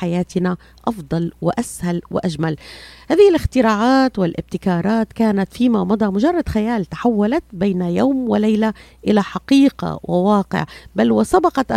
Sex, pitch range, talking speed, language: female, 180-240 Hz, 100 wpm, Arabic